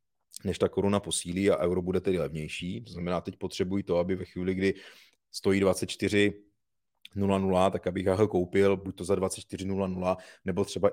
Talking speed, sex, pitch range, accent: 170 wpm, male, 95-105 Hz, native